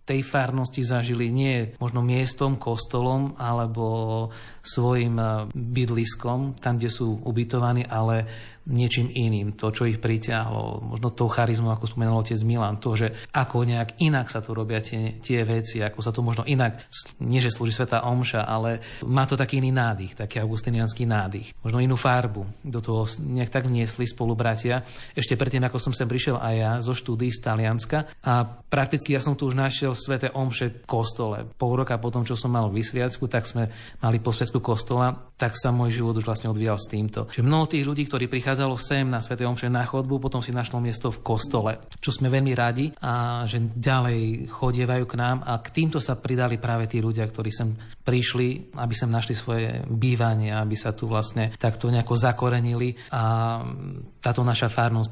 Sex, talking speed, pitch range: male, 180 wpm, 115-130 Hz